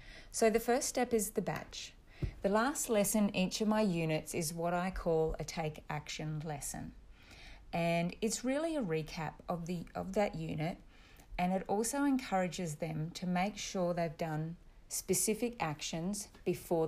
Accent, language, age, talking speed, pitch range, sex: Australian, English, 30-49, 155 wpm, 160-205 Hz, female